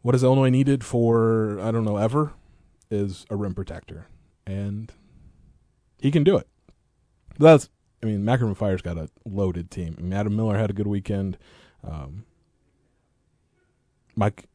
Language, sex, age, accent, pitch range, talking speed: English, male, 20-39, American, 95-115 Hz, 155 wpm